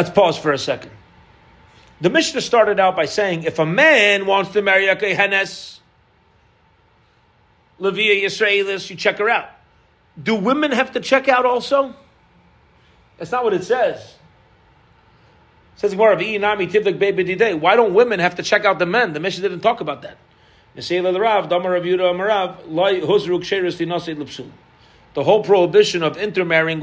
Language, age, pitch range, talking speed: English, 40-59, 160-195 Hz, 125 wpm